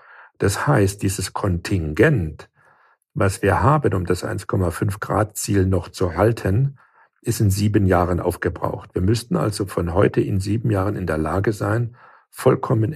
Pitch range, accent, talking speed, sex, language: 90-115 Hz, German, 145 wpm, male, German